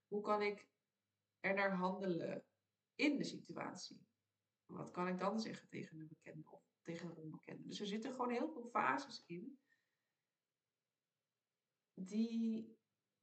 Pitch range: 165-215 Hz